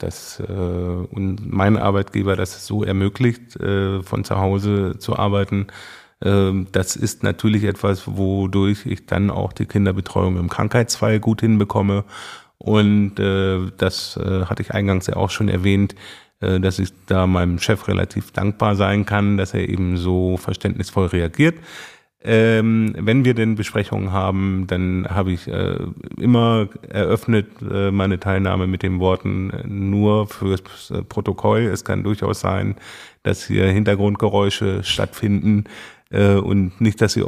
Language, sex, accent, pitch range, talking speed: German, male, German, 95-105 Hz, 130 wpm